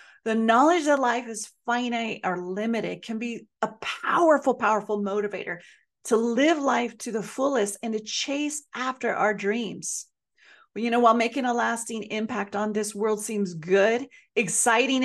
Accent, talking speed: American, 155 wpm